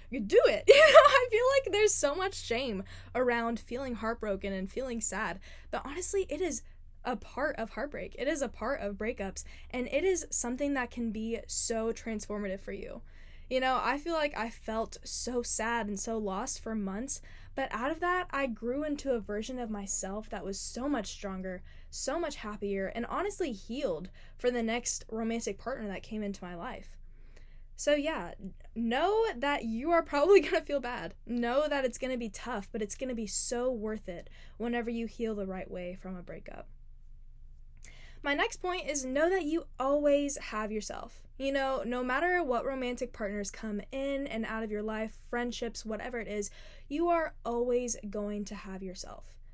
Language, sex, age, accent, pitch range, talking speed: English, female, 10-29, American, 210-280 Hz, 190 wpm